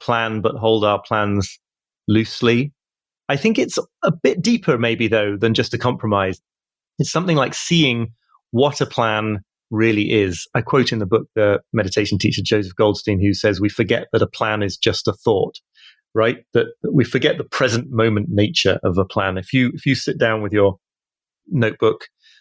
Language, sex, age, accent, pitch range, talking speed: English, male, 30-49, British, 105-125 Hz, 185 wpm